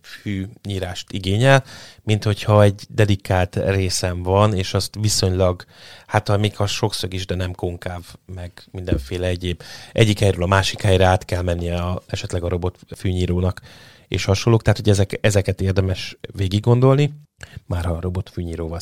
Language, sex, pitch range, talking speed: Hungarian, male, 90-105 Hz, 155 wpm